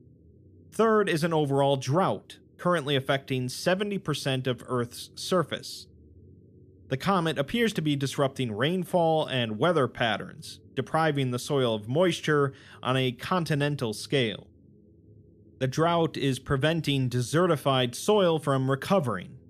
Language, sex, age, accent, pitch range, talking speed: English, male, 30-49, American, 115-150 Hz, 115 wpm